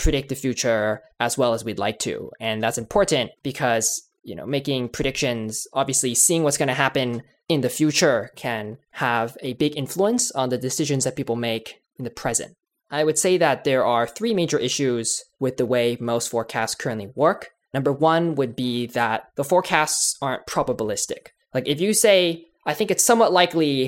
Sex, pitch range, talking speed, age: male, 125-165 Hz, 185 wpm, 20-39